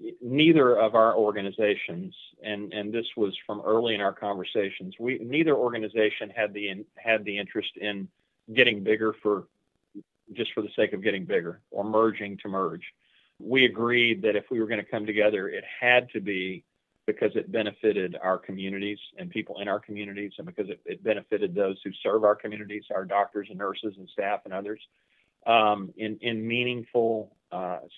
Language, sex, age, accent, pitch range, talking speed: English, male, 40-59, American, 105-115 Hz, 180 wpm